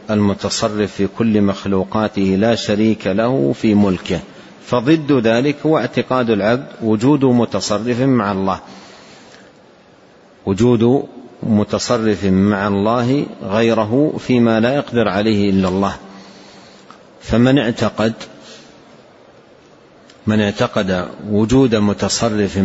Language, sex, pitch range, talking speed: Arabic, male, 100-120 Hz, 95 wpm